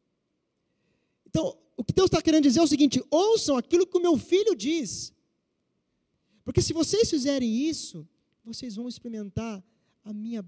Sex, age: male, 20-39